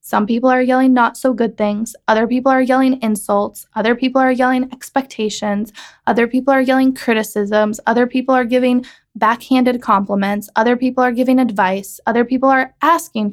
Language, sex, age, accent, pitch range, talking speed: English, female, 20-39, American, 200-245 Hz, 170 wpm